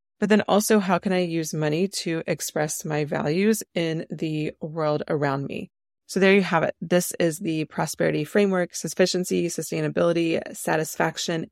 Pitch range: 155-185 Hz